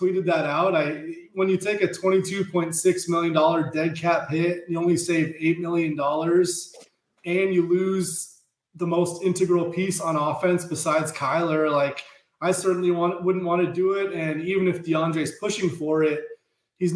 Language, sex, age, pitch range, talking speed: English, male, 20-39, 155-180 Hz, 165 wpm